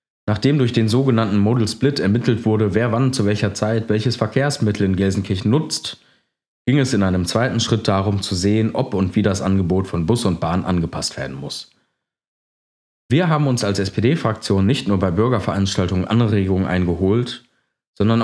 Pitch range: 95-115 Hz